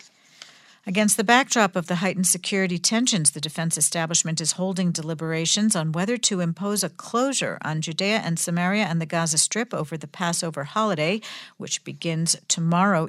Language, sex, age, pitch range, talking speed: English, female, 50-69, 165-200 Hz, 160 wpm